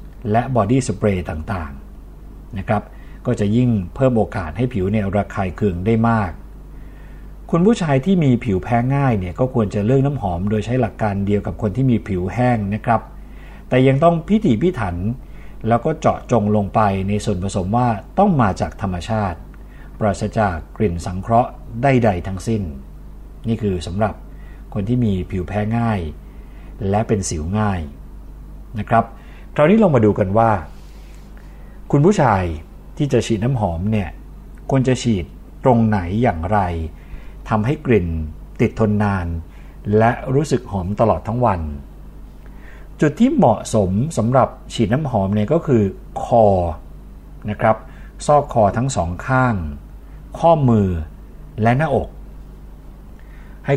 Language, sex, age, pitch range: Thai, male, 60-79, 85-115 Hz